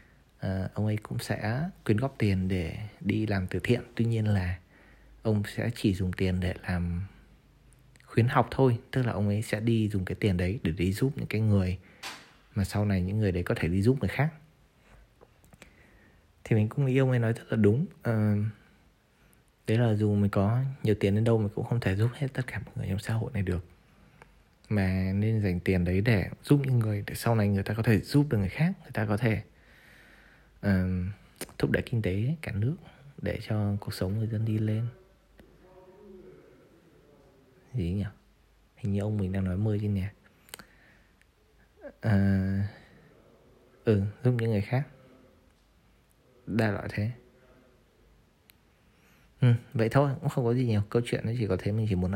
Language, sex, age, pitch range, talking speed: Vietnamese, male, 20-39, 100-120 Hz, 185 wpm